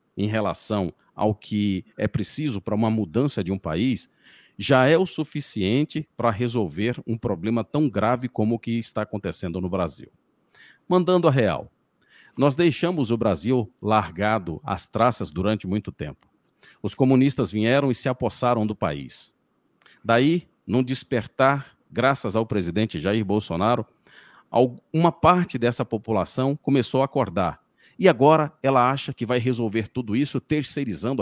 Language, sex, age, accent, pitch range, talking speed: Portuguese, male, 50-69, Brazilian, 100-130 Hz, 145 wpm